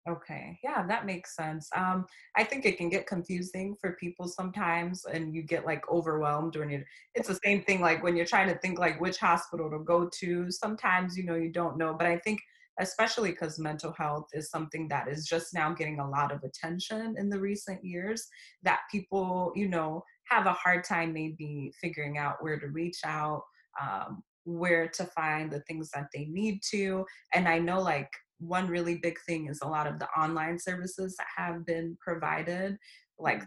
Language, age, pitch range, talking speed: English, 20-39, 155-190 Hz, 200 wpm